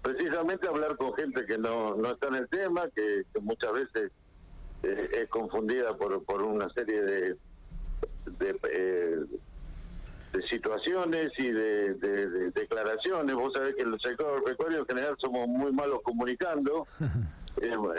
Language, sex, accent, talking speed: Spanish, male, Argentinian, 155 wpm